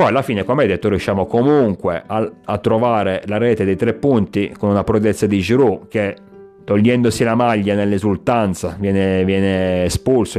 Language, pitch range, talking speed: Italian, 95-115 Hz, 160 wpm